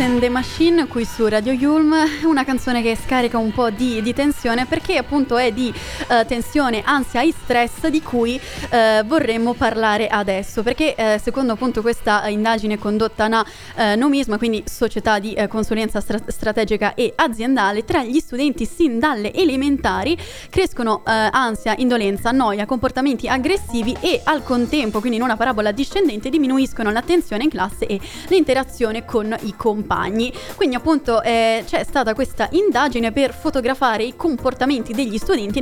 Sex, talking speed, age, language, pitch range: female, 155 wpm, 20-39, Italian, 220-275 Hz